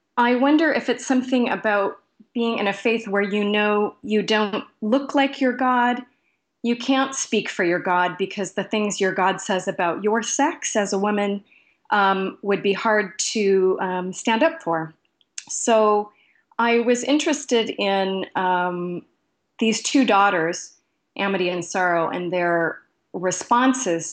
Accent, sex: American, female